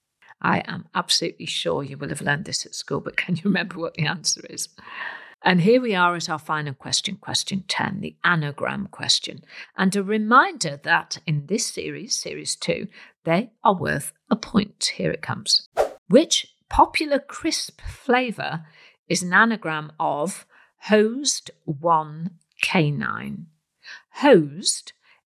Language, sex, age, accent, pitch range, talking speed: English, female, 50-69, British, 160-215 Hz, 145 wpm